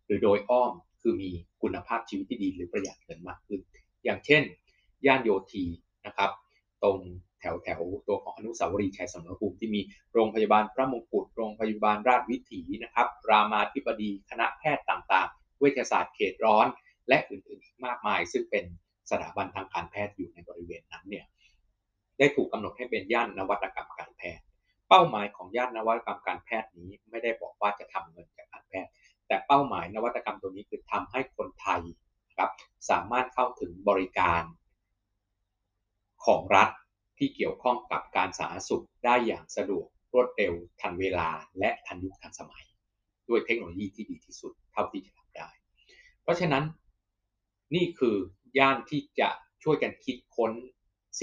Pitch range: 95-130 Hz